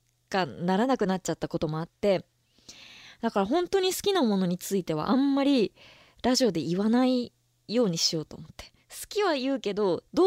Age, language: 20-39, Japanese